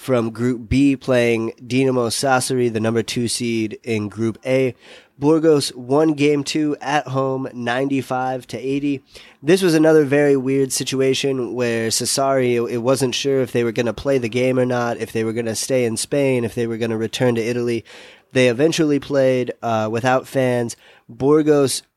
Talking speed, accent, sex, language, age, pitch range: 180 wpm, American, male, English, 20-39, 115-135 Hz